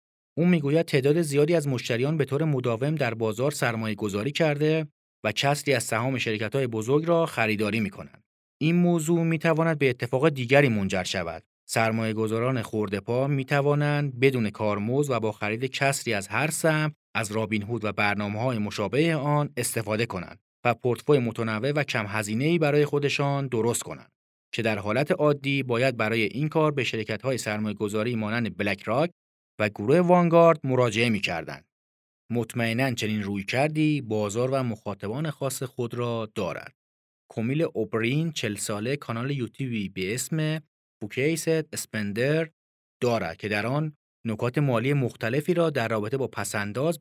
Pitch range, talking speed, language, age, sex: 110-145 Hz, 155 wpm, Persian, 40-59, male